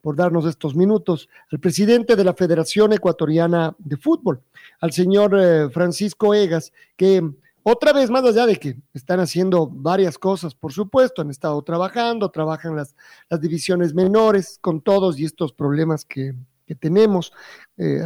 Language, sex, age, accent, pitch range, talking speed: Spanish, male, 50-69, Mexican, 165-215 Hz, 155 wpm